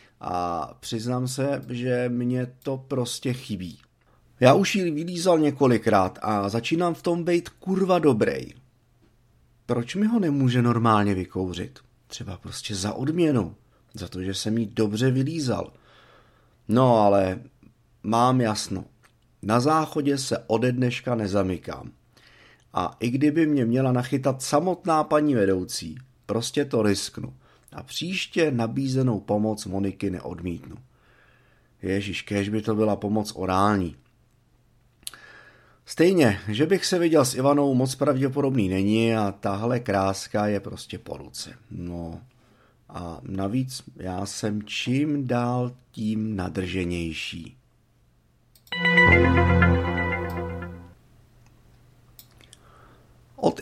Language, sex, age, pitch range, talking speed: Czech, male, 30-49, 100-130 Hz, 110 wpm